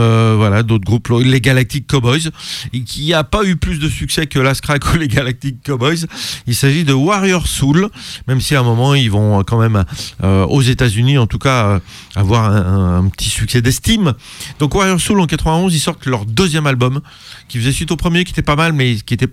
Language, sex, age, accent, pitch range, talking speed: French, male, 40-59, French, 115-150 Hz, 225 wpm